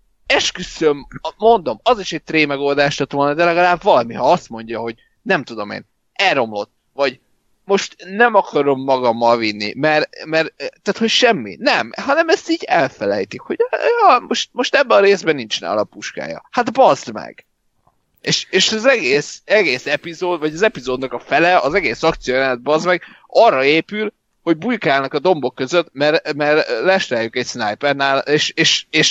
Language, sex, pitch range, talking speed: Hungarian, male, 135-190 Hz, 165 wpm